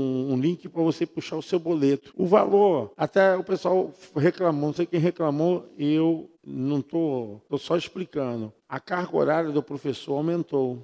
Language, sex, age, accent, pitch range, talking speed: Portuguese, male, 50-69, Brazilian, 125-175 Hz, 165 wpm